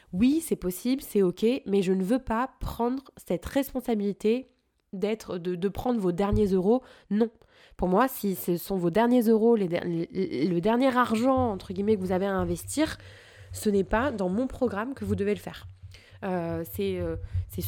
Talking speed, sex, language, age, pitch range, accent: 190 wpm, female, French, 20-39, 185-250 Hz, French